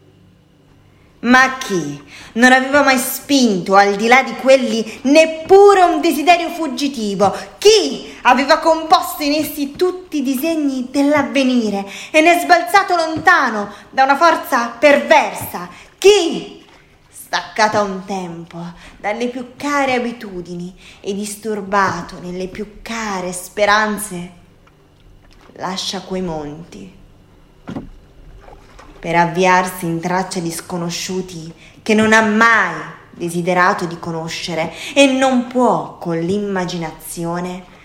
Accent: native